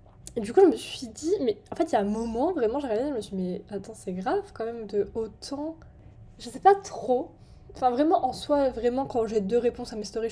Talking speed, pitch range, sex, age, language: 270 wpm, 205-255 Hz, female, 10-29, French